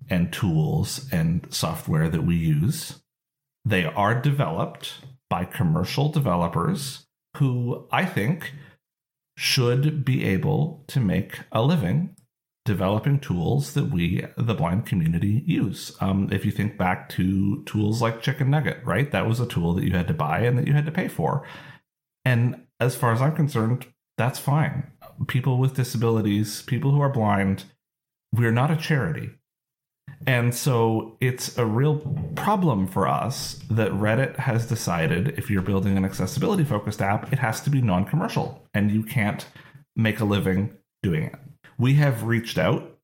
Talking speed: 155 wpm